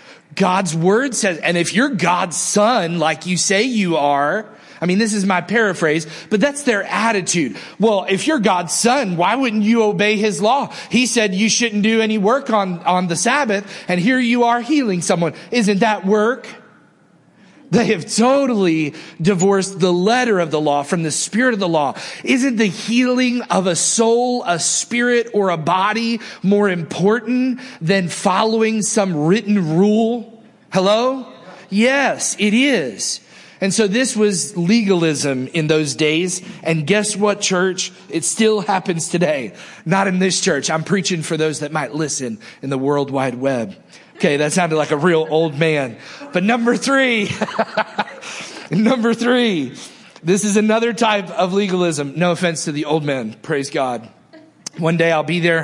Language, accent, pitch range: English, American, 165-220 Hz